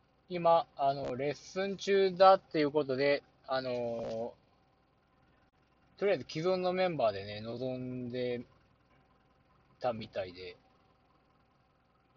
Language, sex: Japanese, male